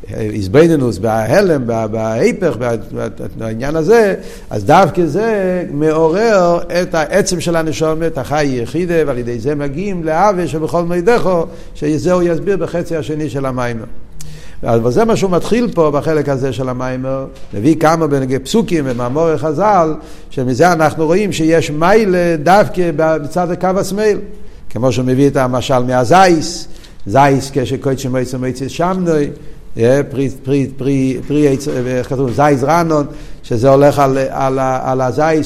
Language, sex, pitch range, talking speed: Hebrew, male, 135-180 Hz, 125 wpm